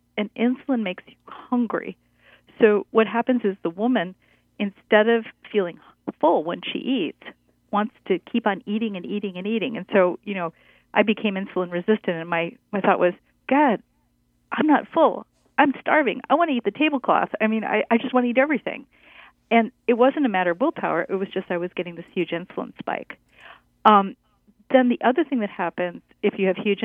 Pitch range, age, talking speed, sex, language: 180-230 Hz, 40-59, 200 wpm, female, English